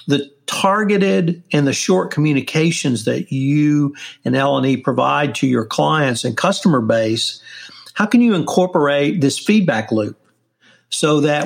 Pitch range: 135-170 Hz